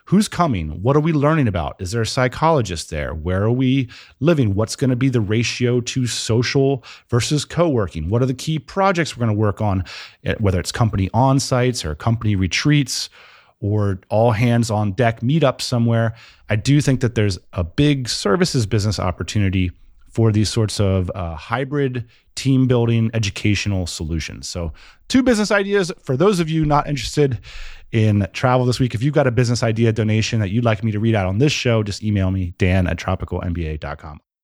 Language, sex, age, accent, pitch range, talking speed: English, male, 30-49, American, 100-140 Hz, 190 wpm